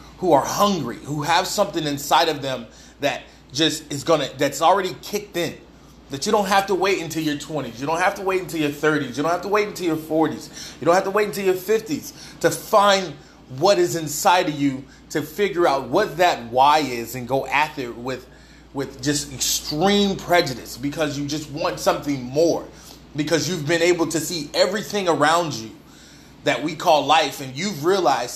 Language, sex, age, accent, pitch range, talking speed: English, male, 30-49, American, 140-175 Hz, 200 wpm